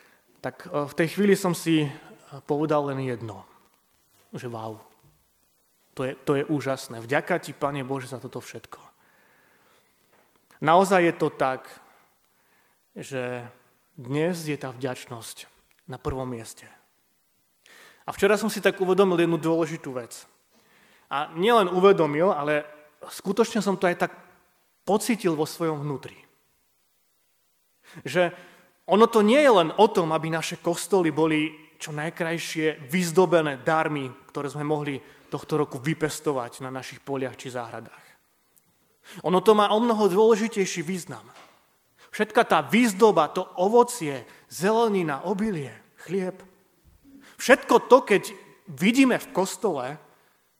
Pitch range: 140-190 Hz